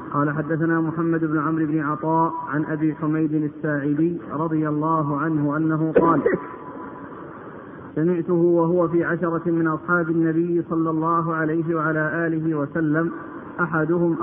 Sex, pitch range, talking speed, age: male, 160-175 Hz, 125 wpm, 50-69